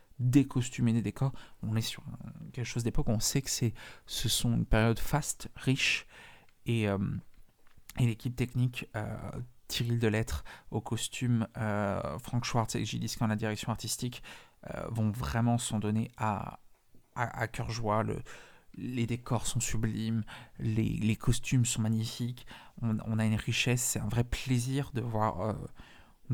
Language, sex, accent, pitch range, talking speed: French, male, French, 110-125 Hz, 165 wpm